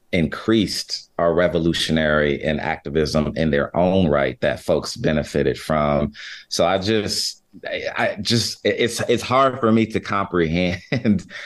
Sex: male